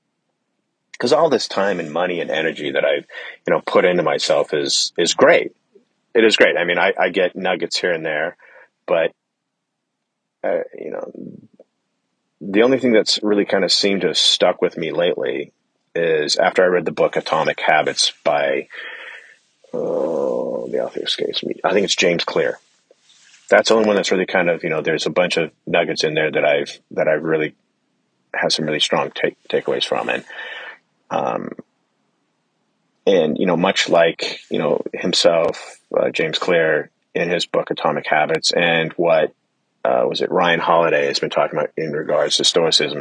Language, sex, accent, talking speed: English, male, American, 175 wpm